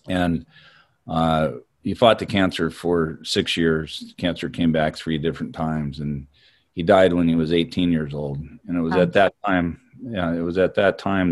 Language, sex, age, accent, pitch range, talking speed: English, male, 40-59, American, 80-90 Hz, 190 wpm